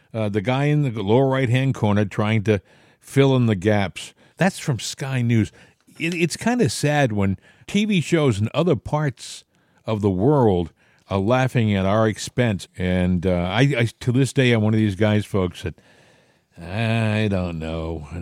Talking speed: 180 wpm